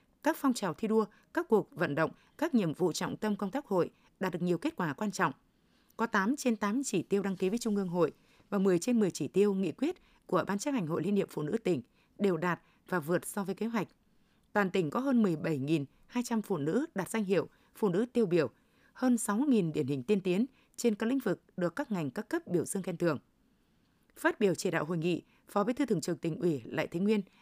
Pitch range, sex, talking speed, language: 180-235 Hz, female, 245 wpm, Vietnamese